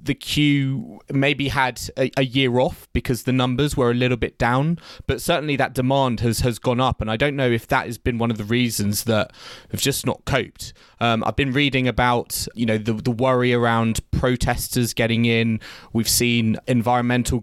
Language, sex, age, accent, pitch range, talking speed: English, male, 20-39, British, 115-140 Hz, 200 wpm